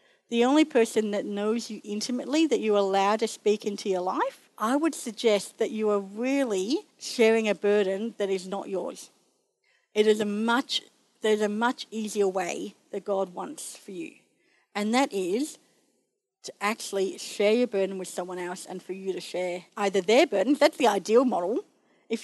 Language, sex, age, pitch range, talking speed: English, female, 50-69, 205-280 Hz, 180 wpm